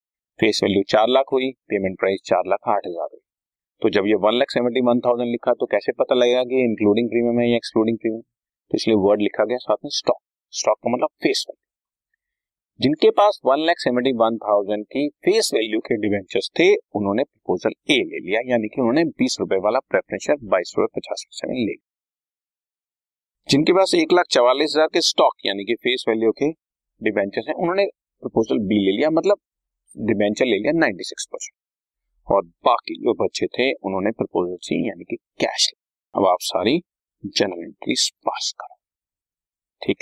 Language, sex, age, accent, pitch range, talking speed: Hindi, male, 30-49, native, 105-175 Hz, 135 wpm